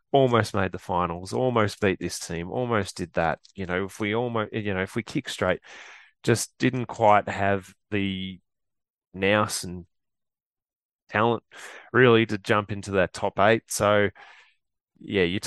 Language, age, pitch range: English, 20-39, 95-110 Hz